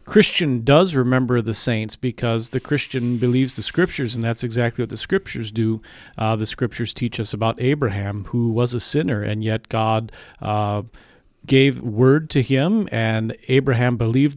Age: 40-59